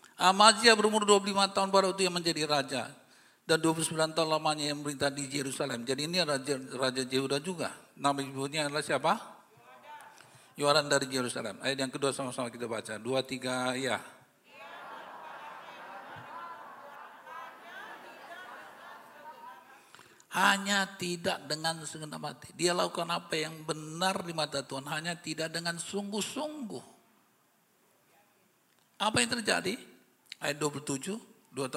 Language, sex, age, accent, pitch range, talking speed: Indonesian, male, 50-69, native, 145-205 Hz, 110 wpm